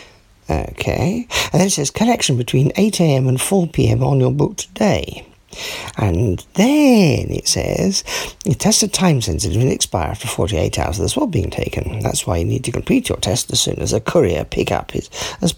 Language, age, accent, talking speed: English, 50-69, British, 190 wpm